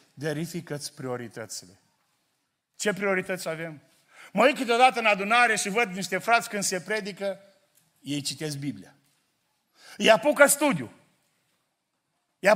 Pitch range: 145-200 Hz